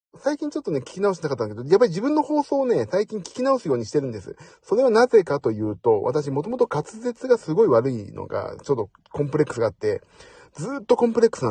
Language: Japanese